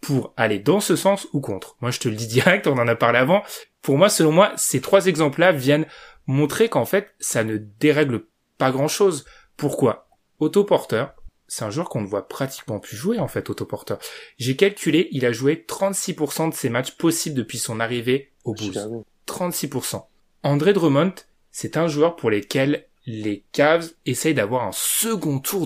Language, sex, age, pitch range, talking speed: French, male, 20-39, 125-180 Hz, 180 wpm